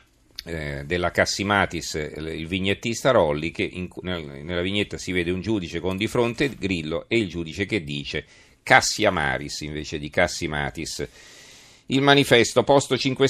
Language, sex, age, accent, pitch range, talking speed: Italian, male, 40-59, native, 90-110 Hz, 135 wpm